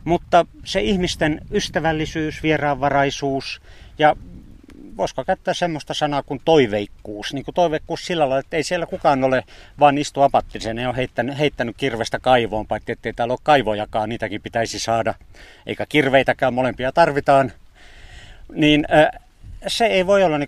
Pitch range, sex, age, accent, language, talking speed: 115-150 Hz, male, 60-79, native, Finnish, 140 wpm